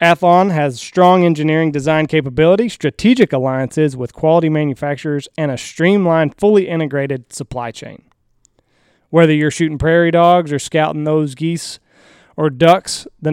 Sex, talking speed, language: male, 135 wpm, English